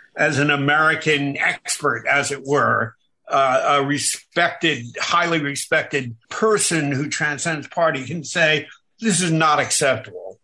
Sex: male